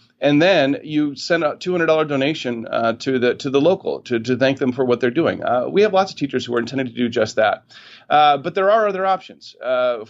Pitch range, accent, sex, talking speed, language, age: 115-150 Hz, American, male, 245 wpm, English, 40-59